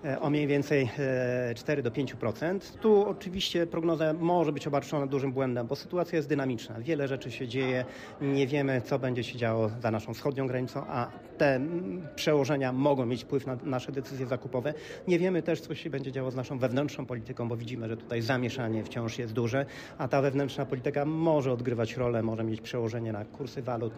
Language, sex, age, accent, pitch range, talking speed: Polish, male, 40-59, native, 125-155 Hz, 185 wpm